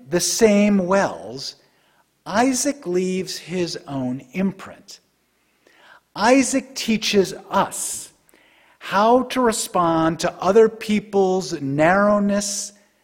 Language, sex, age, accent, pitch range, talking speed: English, male, 50-69, American, 165-220 Hz, 85 wpm